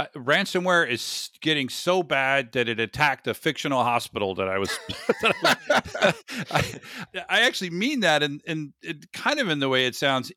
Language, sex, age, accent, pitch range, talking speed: English, male, 40-59, American, 120-160 Hz, 185 wpm